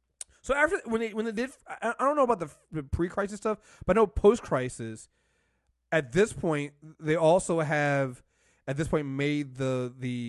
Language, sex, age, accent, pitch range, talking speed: English, male, 30-49, American, 120-155 Hz, 180 wpm